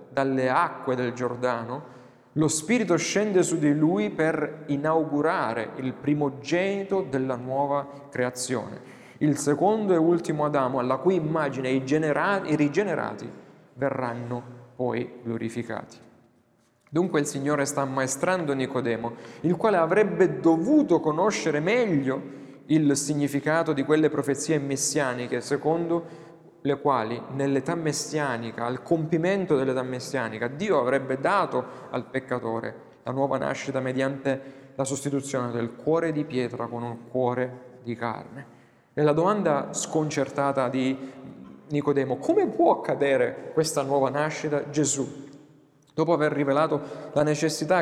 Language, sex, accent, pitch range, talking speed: Italian, male, native, 130-160 Hz, 120 wpm